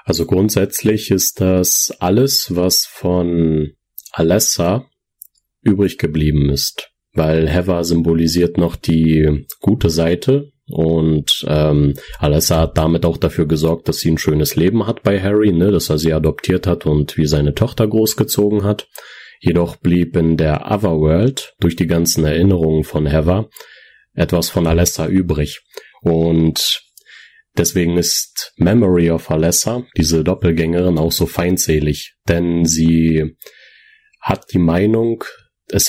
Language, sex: German, male